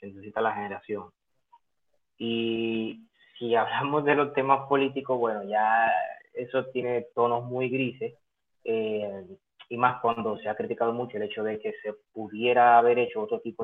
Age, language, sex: 20-39, Spanish, male